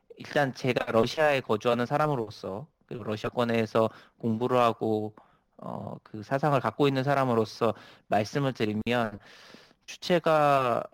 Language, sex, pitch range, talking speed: English, male, 110-140 Hz, 100 wpm